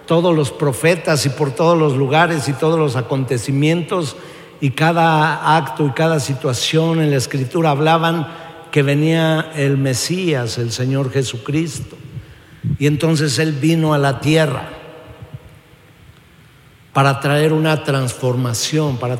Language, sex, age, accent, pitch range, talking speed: Spanish, male, 50-69, Mexican, 135-160 Hz, 130 wpm